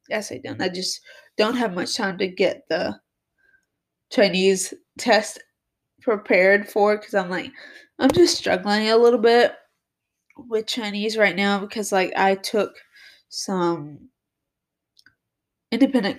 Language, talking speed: English, 130 wpm